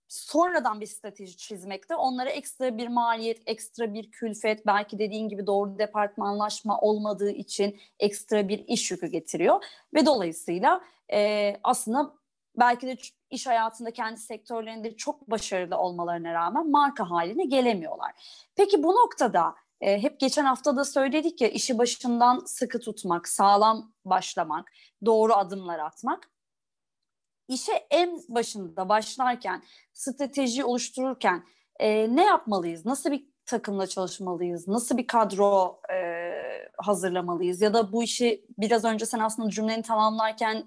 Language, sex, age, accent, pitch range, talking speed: Turkish, female, 30-49, native, 200-260 Hz, 125 wpm